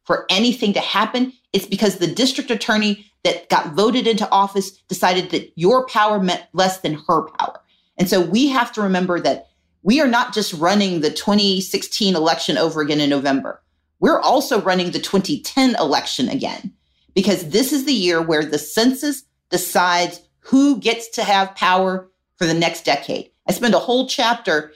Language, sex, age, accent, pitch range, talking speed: English, female, 40-59, American, 180-240 Hz, 175 wpm